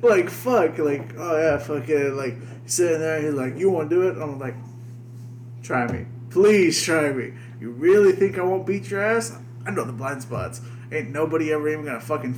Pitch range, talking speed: 120-140 Hz, 215 wpm